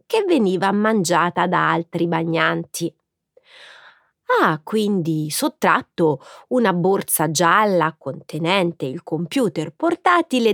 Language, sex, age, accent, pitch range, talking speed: Italian, female, 30-49, native, 165-265 Hz, 90 wpm